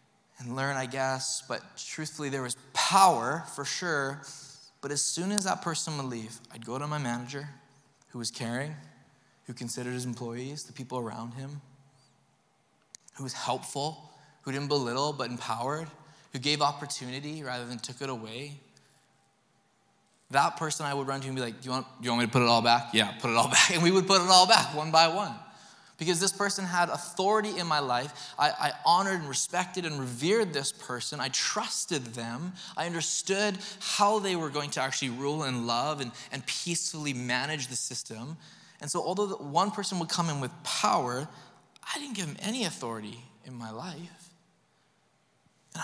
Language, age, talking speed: English, 20-39, 185 wpm